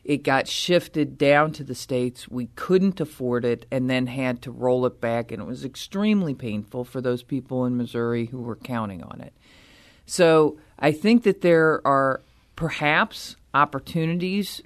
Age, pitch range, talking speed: 40-59, 125-180 Hz, 170 wpm